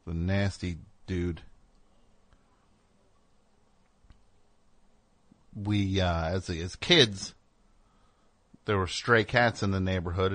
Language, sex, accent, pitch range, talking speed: English, male, American, 95-115 Hz, 85 wpm